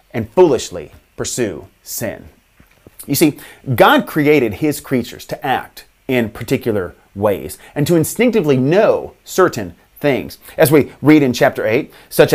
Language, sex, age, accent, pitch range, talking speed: English, male, 30-49, American, 130-185 Hz, 135 wpm